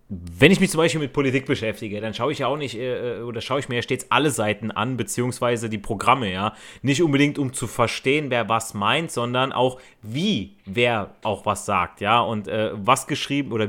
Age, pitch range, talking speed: 30-49, 115-150 Hz, 215 wpm